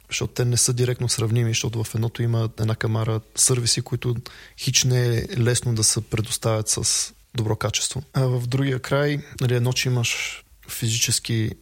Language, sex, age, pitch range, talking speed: Bulgarian, male, 20-39, 110-130 Hz, 165 wpm